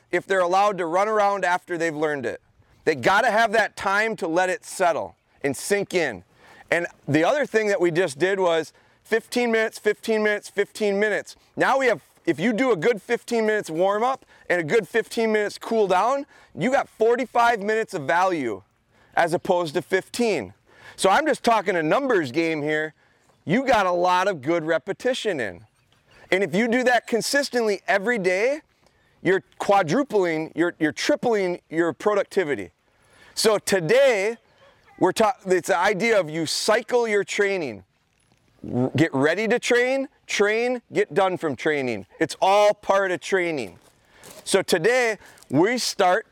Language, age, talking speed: English, 30-49, 165 wpm